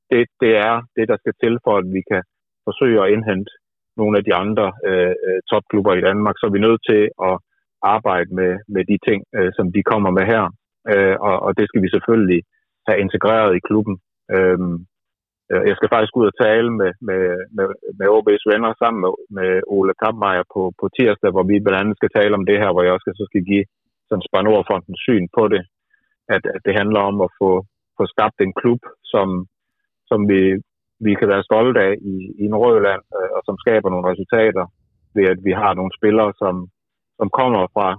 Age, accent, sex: 30-49, native, male